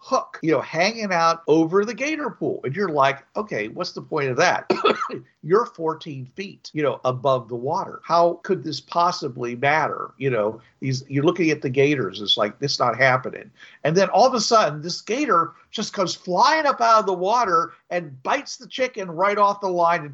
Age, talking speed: 50-69, 205 wpm